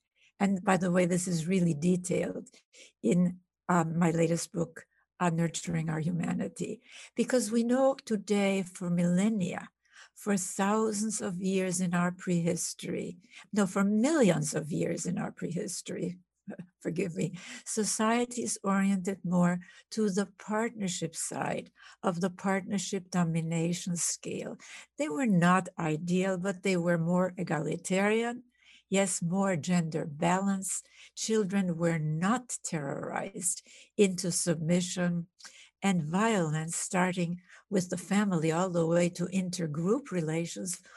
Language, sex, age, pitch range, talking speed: English, female, 60-79, 175-205 Hz, 120 wpm